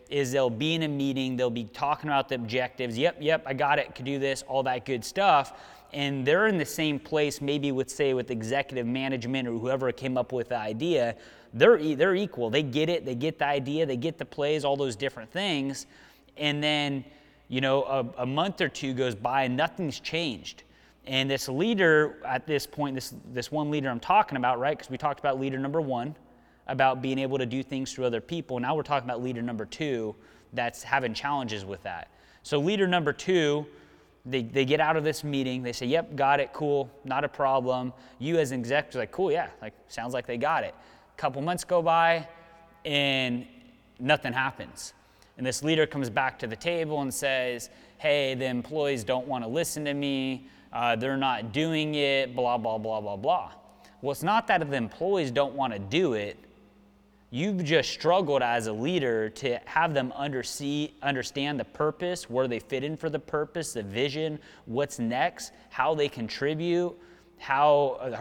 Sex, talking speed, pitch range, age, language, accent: male, 200 wpm, 125-150 Hz, 30-49, English, American